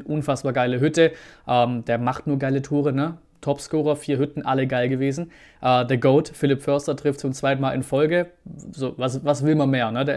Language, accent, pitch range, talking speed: German, German, 125-150 Hz, 205 wpm